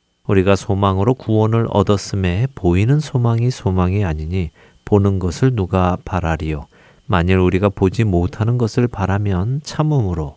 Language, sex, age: Korean, male, 40-59